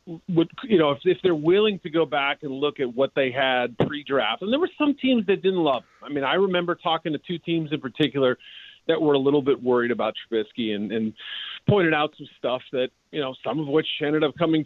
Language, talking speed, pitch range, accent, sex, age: English, 240 wpm, 130-165 Hz, American, male, 40-59